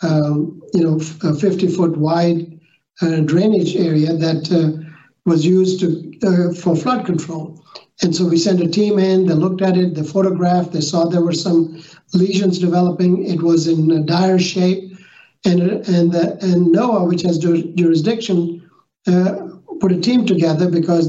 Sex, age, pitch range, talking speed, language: male, 60-79, 165-185 Hz, 170 wpm, English